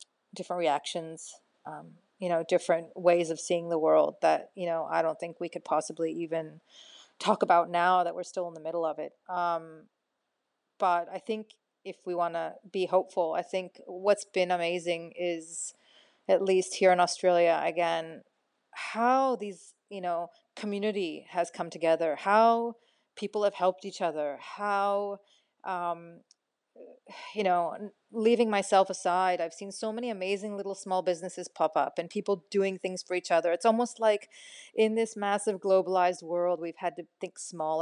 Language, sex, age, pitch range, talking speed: English, female, 30-49, 170-200 Hz, 165 wpm